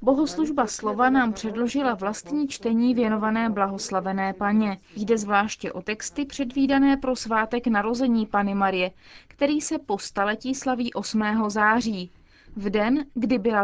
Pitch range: 205-260 Hz